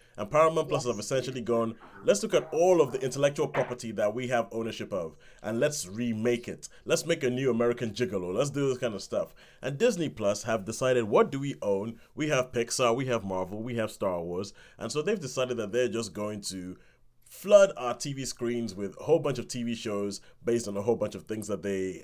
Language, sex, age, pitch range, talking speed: English, male, 30-49, 110-130 Hz, 225 wpm